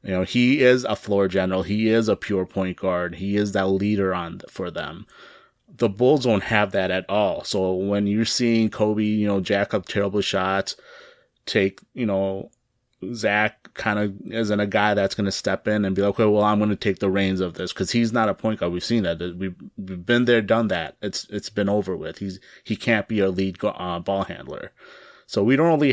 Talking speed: 220 wpm